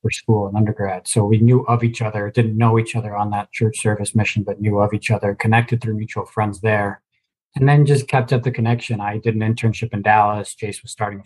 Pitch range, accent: 105-120 Hz, American